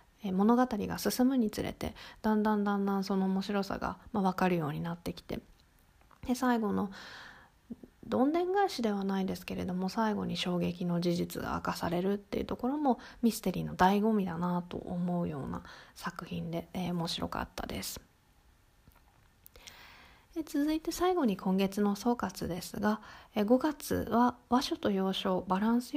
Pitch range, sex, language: 180-220 Hz, female, Japanese